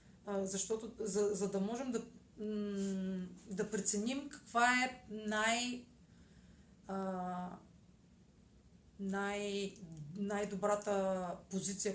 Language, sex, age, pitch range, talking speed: Bulgarian, female, 30-49, 195-240 Hz, 75 wpm